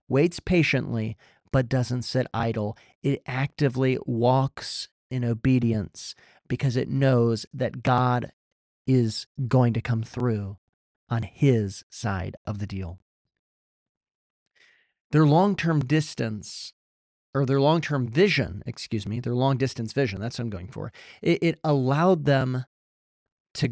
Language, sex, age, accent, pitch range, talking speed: English, male, 40-59, American, 115-150 Hz, 125 wpm